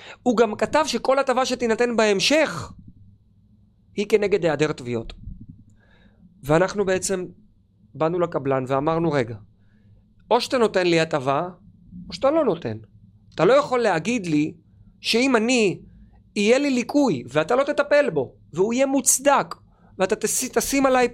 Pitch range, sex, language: 135-220 Hz, male, Hebrew